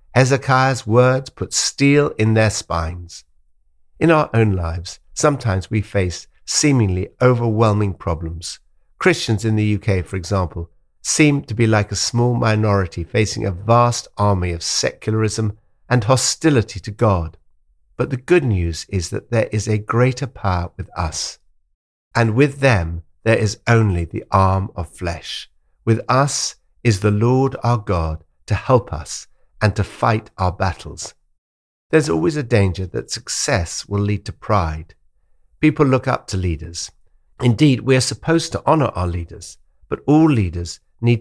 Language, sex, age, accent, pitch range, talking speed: English, male, 60-79, British, 85-120 Hz, 155 wpm